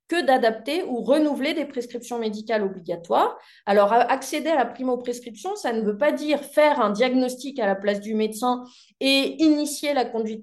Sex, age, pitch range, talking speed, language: female, 20-39, 215-290 Hz, 175 wpm, French